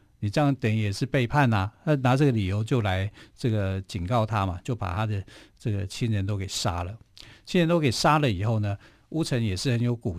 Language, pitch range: Chinese, 105-130 Hz